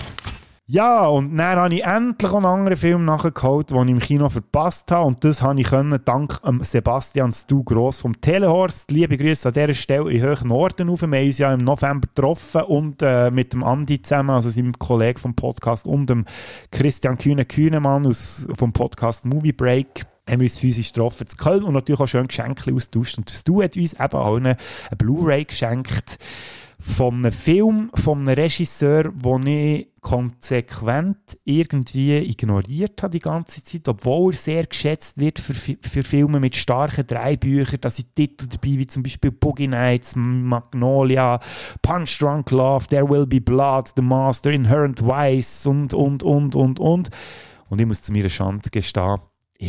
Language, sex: German, male